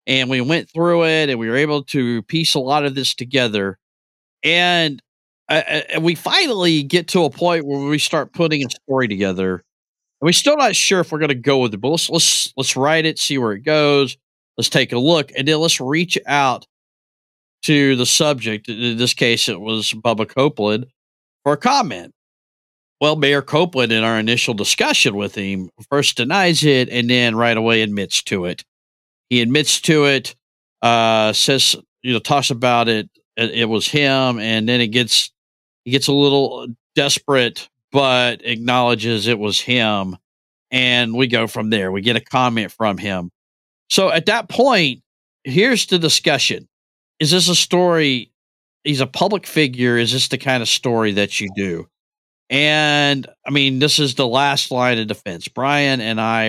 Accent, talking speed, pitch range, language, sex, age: American, 185 wpm, 115-150 Hz, English, male, 40-59